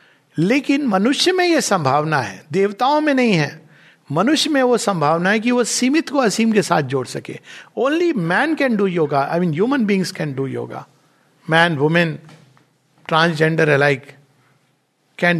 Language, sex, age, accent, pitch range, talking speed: Hindi, male, 60-79, native, 150-210 Hz, 160 wpm